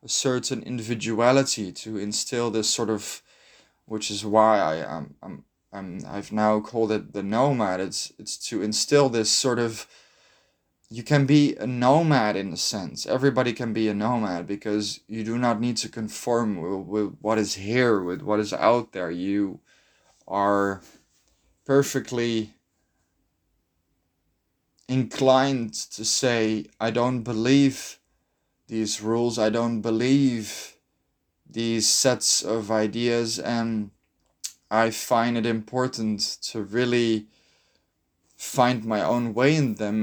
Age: 20-39